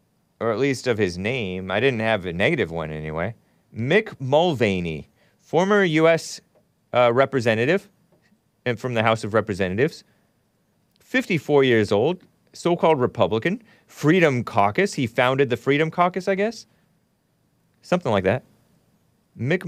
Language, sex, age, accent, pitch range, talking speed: English, male, 30-49, American, 115-160 Hz, 130 wpm